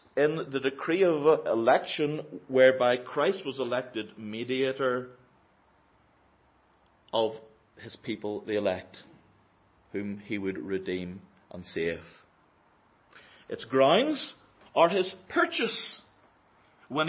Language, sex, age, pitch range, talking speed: English, male, 40-59, 125-170 Hz, 95 wpm